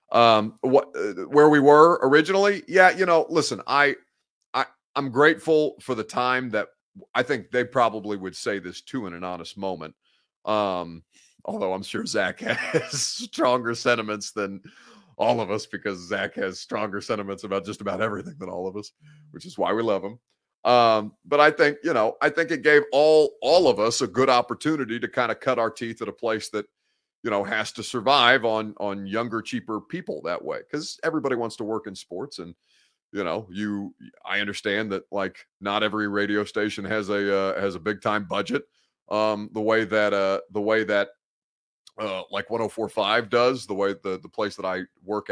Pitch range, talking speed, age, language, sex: 100-125 Hz, 200 wpm, 40-59, English, male